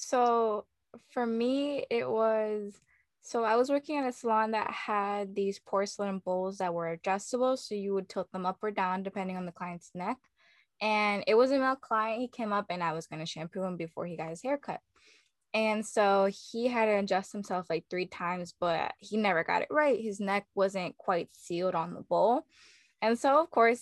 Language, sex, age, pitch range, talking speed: English, female, 10-29, 190-235 Hz, 205 wpm